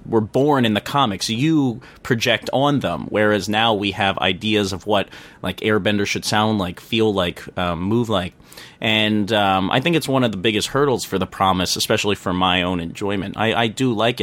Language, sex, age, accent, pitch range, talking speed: English, male, 30-49, American, 100-125 Hz, 205 wpm